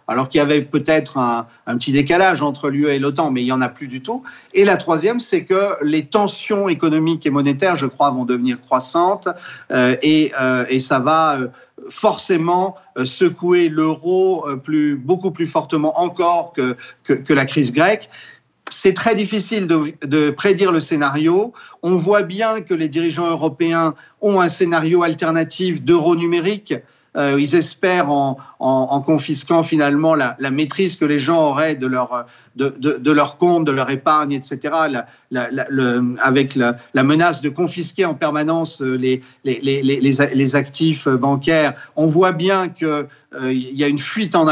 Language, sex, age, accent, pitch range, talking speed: French, male, 40-59, French, 140-170 Hz, 175 wpm